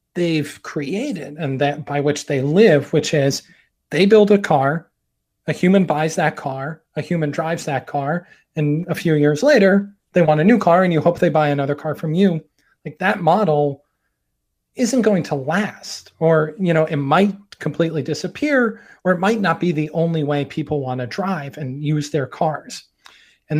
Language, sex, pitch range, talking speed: English, male, 145-185 Hz, 190 wpm